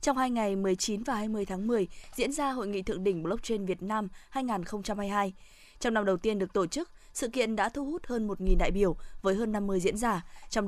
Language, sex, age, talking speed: Vietnamese, female, 20-39, 225 wpm